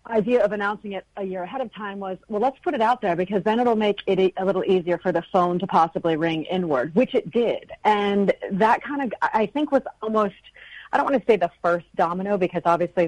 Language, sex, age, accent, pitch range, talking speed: English, female, 40-59, American, 170-200 Hz, 240 wpm